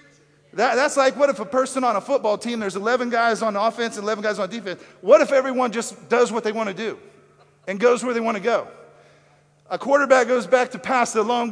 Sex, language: male, English